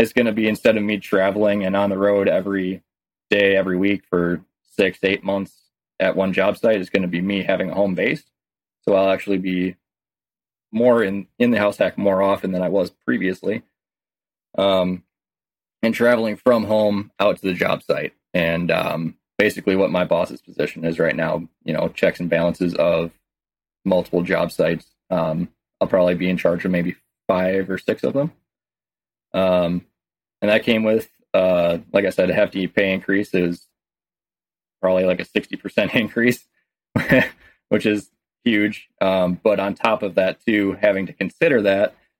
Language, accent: English, American